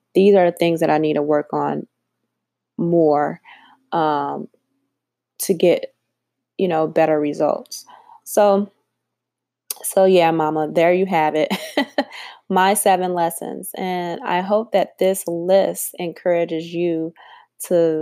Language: English